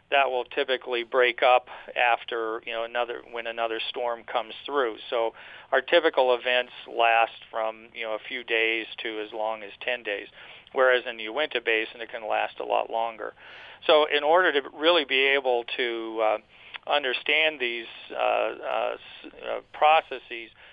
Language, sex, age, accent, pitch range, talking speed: English, male, 40-59, American, 115-130 Hz, 160 wpm